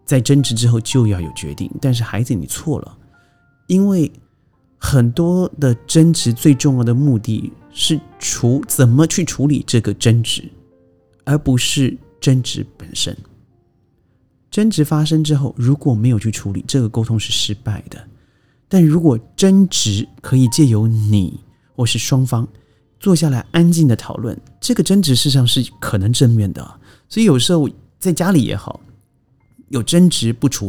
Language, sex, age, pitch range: Chinese, male, 30-49, 105-140 Hz